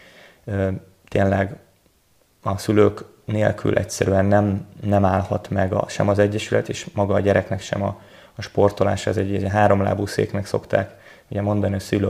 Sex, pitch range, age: male, 100-105 Hz, 20-39